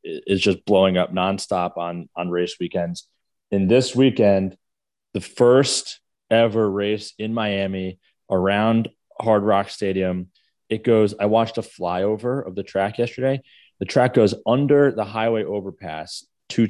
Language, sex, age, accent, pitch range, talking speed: English, male, 30-49, American, 95-115 Hz, 145 wpm